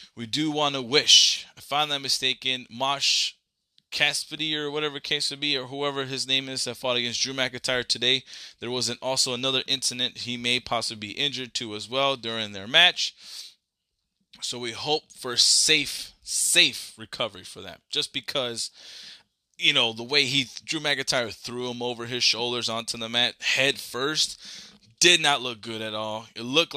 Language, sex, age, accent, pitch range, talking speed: English, male, 20-39, American, 115-145 Hz, 180 wpm